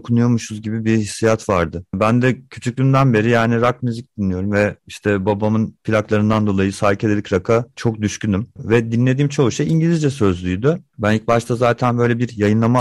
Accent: native